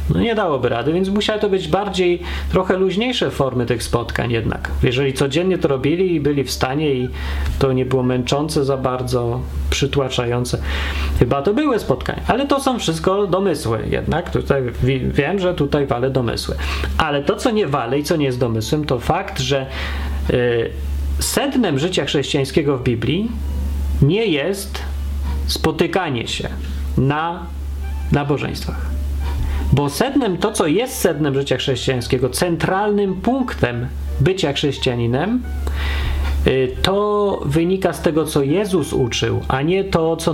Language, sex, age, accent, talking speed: Polish, male, 30-49, native, 140 wpm